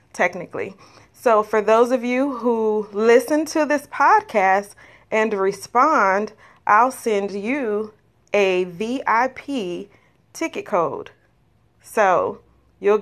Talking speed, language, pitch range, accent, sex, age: 100 wpm, English, 190-240 Hz, American, female, 30-49